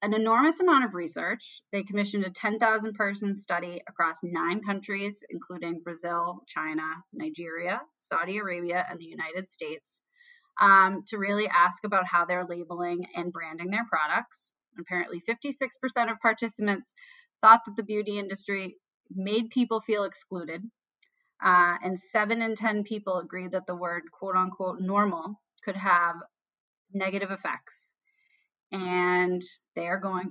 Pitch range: 180-230 Hz